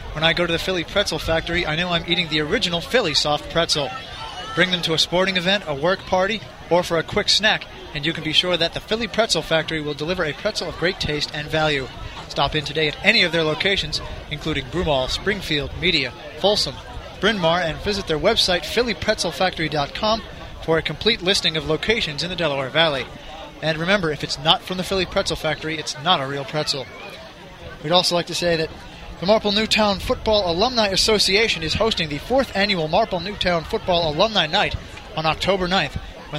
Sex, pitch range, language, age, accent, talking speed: male, 155-190 Hz, English, 30-49, American, 200 wpm